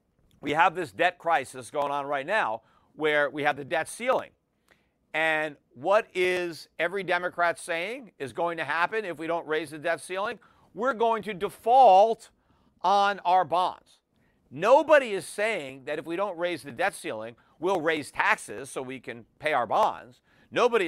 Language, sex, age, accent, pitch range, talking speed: English, male, 50-69, American, 150-210 Hz, 170 wpm